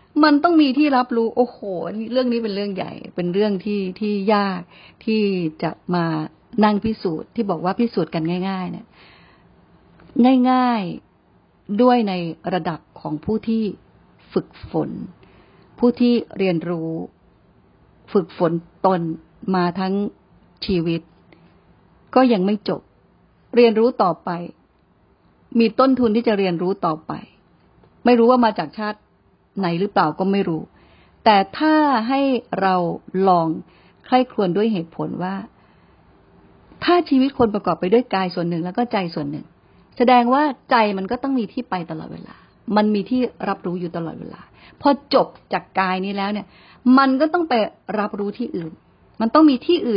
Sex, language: female, Thai